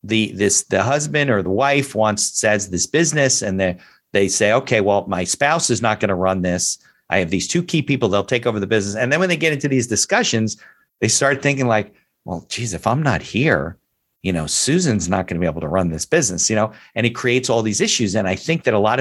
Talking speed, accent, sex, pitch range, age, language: 255 wpm, American, male, 95-125 Hz, 50-69, English